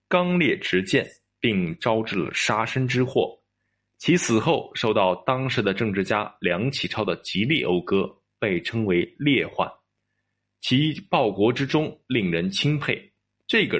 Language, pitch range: Chinese, 110-155 Hz